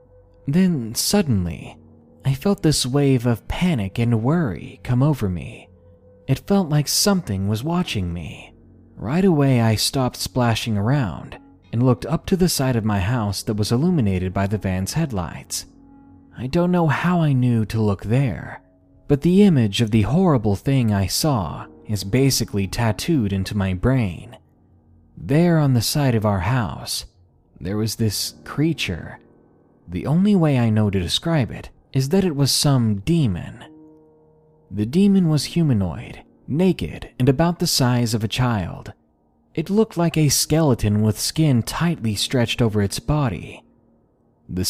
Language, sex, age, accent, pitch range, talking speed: English, male, 30-49, American, 100-150 Hz, 155 wpm